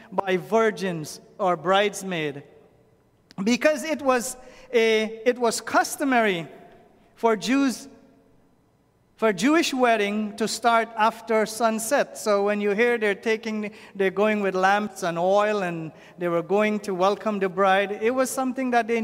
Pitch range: 185-225 Hz